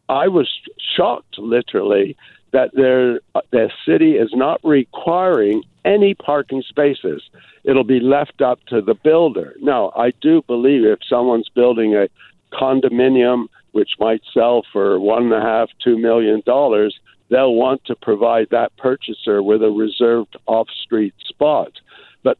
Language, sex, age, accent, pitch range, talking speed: English, male, 60-79, American, 115-145 Hz, 140 wpm